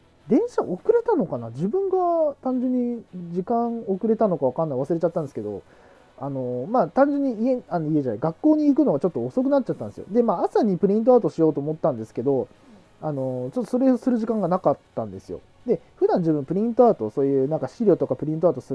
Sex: male